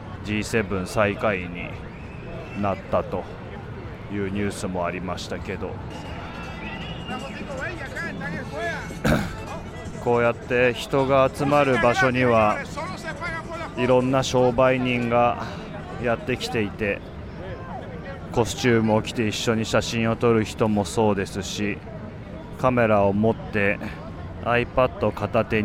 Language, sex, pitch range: Japanese, male, 95-120 Hz